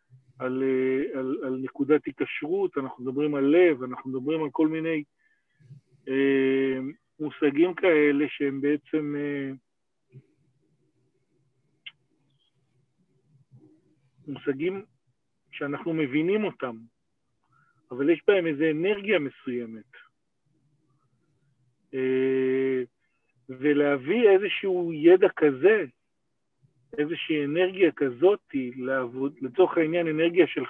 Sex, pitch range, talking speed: male, 135-190 Hz, 85 wpm